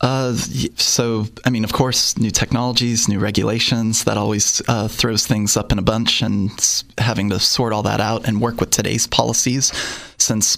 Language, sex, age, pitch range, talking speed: English, male, 20-39, 105-125 Hz, 180 wpm